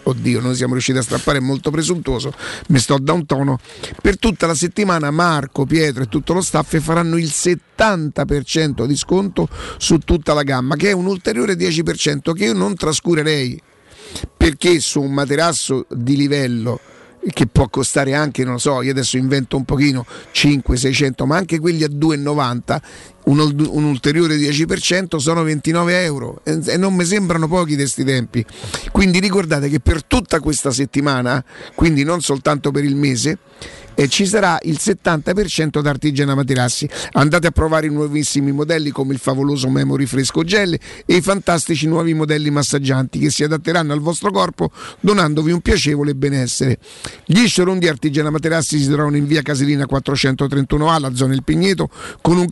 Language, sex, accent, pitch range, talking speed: Italian, male, native, 140-170 Hz, 165 wpm